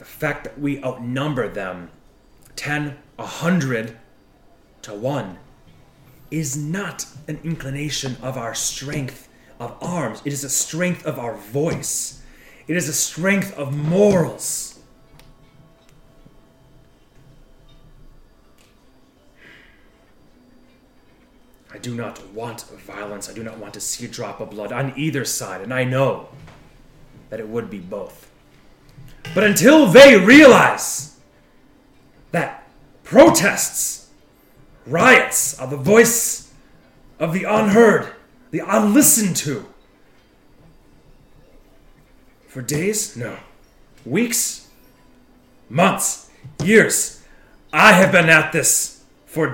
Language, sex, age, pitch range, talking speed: English, male, 30-49, 120-165 Hz, 105 wpm